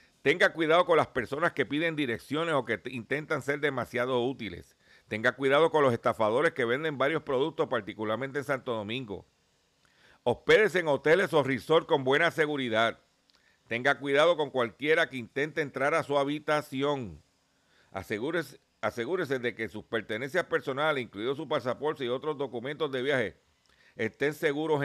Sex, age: male, 50-69